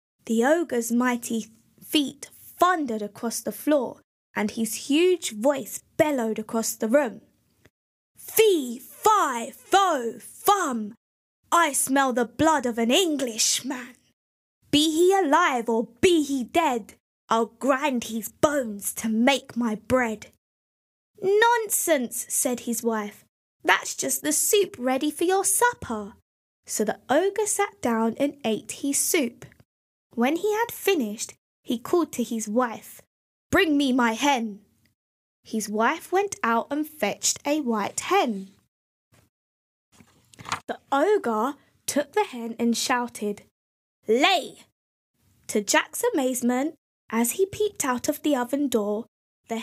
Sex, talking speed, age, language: female, 125 wpm, 20-39, English